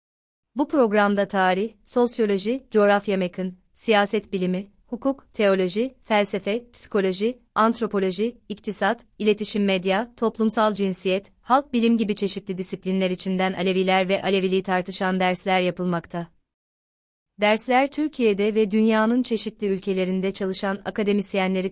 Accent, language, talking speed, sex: native, Turkish, 105 wpm, female